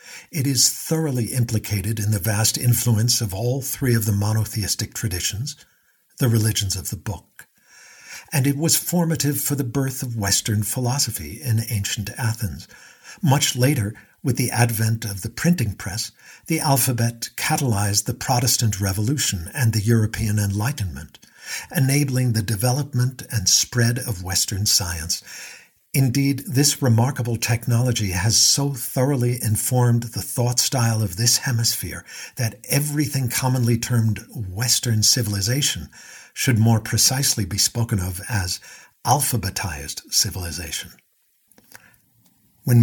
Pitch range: 105-130 Hz